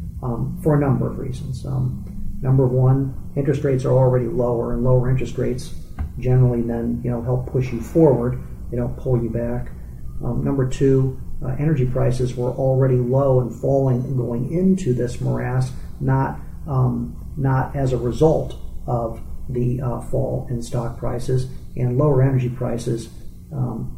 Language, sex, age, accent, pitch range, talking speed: English, male, 40-59, American, 120-135 Hz, 165 wpm